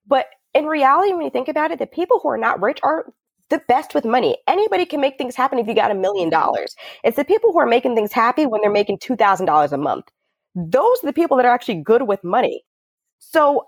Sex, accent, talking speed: female, American, 240 wpm